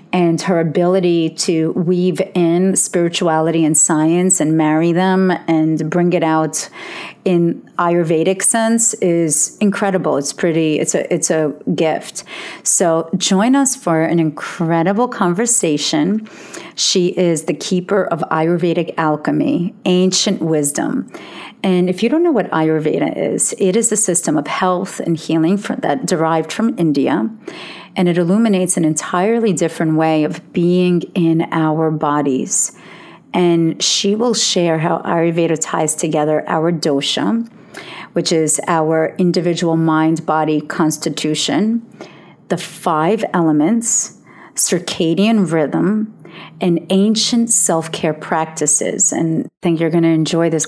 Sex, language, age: female, English, 40-59